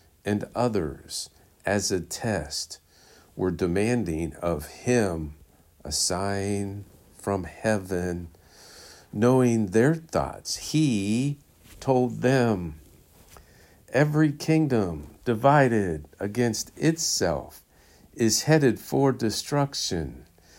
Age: 50-69